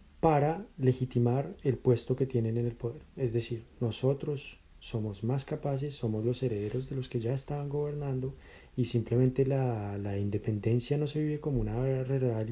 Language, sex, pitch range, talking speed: Spanish, male, 115-140 Hz, 170 wpm